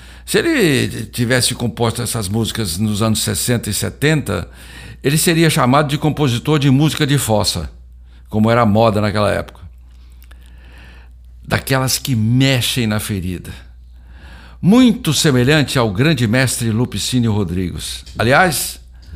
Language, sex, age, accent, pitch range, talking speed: Portuguese, male, 60-79, Brazilian, 80-135 Hz, 120 wpm